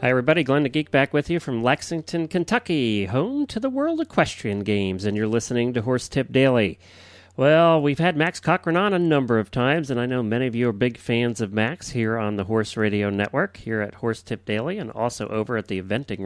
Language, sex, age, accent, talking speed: English, male, 40-59, American, 230 wpm